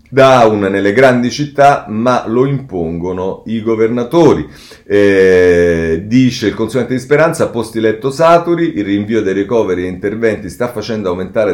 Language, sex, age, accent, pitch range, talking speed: Italian, male, 40-59, native, 90-130 Hz, 140 wpm